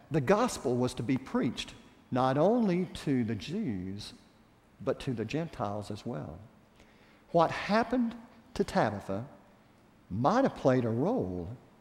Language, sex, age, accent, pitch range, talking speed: English, male, 50-69, American, 125-185 Hz, 130 wpm